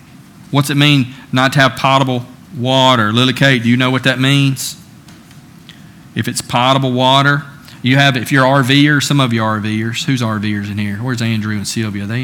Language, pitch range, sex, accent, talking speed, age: English, 120-145 Hz, male, American, 195 wpm, 40-59